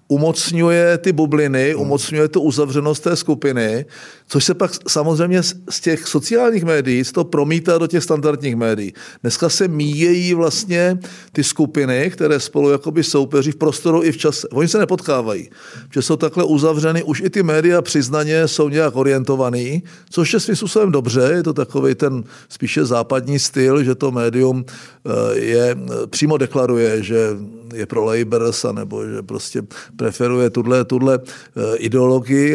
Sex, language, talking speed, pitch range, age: male, Czech, 150 wpm, 125-160 Hz, 50-69